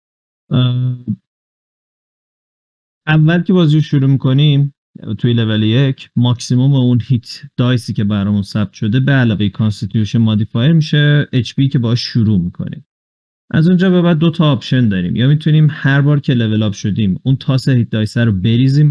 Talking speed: 150 wpm